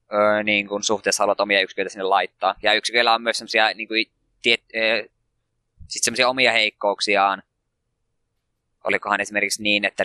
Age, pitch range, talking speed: 20-39, 105-120 Hz, 125 wpm